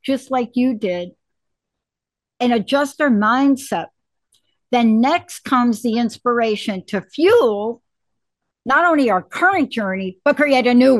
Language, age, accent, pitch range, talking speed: English, 60-79, American, 210-275 Hz, 130 wpm